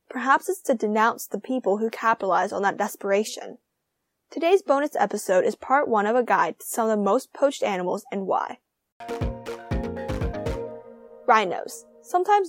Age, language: 10-29, English